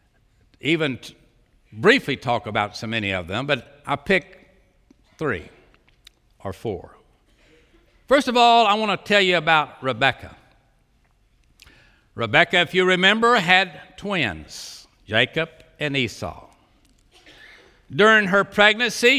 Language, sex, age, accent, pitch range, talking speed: English, male, 60-79, American, 120-200 Hz, 115 wpm